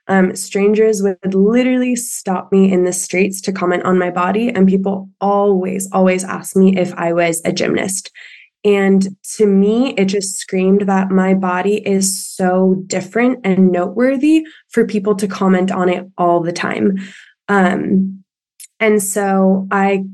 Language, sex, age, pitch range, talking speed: English, female, 20-39, 185-205 Hz, 150 wpm